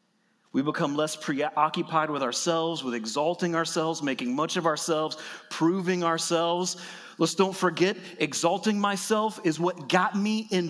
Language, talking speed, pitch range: English, 140 wpm, 140-215 Hz